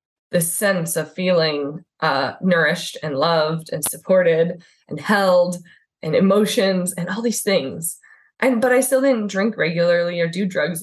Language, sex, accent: English, female, American